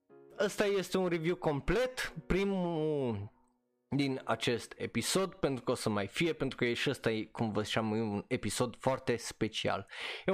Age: 20-39